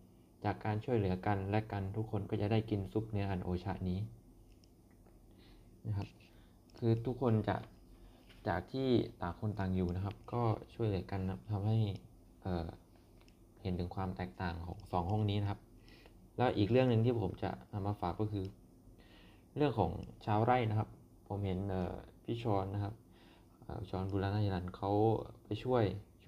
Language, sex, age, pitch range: Thai, male, 20-39, 95-110 Hz